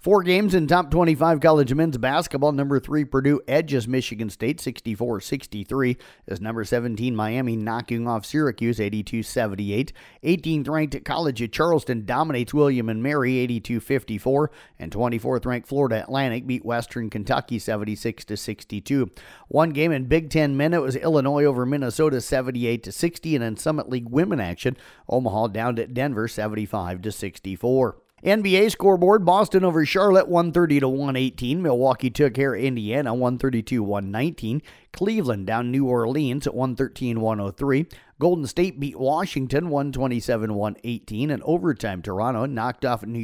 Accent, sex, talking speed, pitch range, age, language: American, male, 130 wpm, 115-155 Hz, 40-59, English